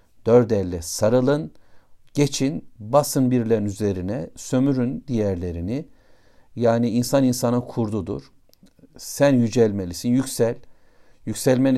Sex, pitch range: male, 105-130 Hz